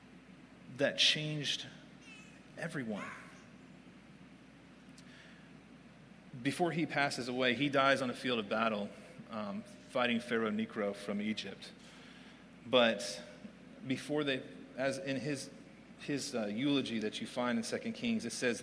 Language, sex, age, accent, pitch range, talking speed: English, male, 30-49, American, 115-160 Hz, 120 wpm